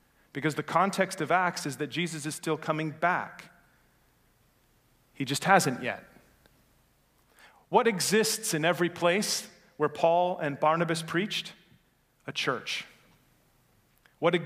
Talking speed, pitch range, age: 120 wpm, 160-195 Hz, 40-59